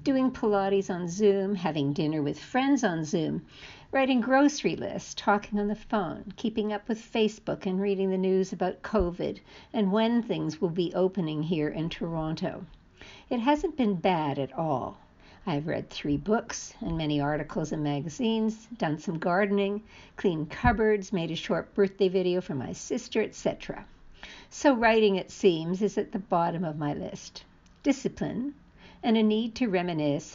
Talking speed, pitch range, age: 160 wpm, 170-220 Hz, 60-79